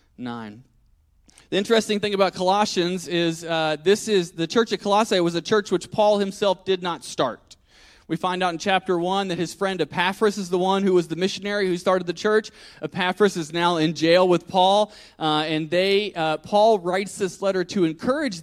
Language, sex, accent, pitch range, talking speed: English, male, American, 175-220 Hz, 200 wpm